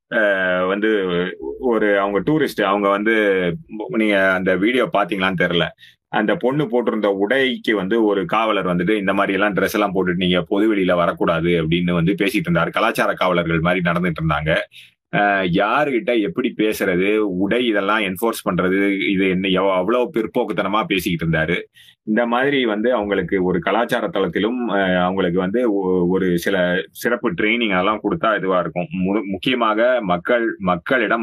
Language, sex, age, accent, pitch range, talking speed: Tamil, male, 30-49, native, 90-110 Hz, 140 wpm